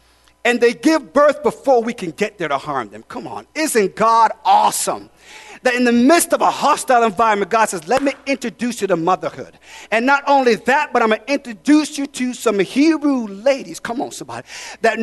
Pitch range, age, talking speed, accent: 180-265 Hz, 40-59, 205 wpm, American